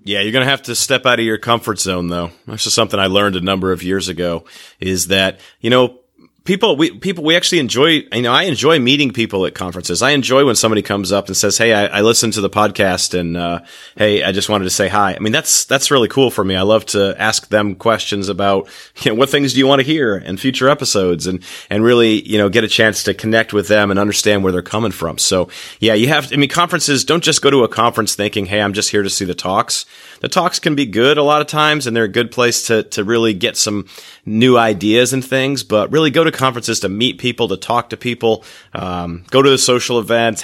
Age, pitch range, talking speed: 30-49, 95-120 Hz, 255 wpm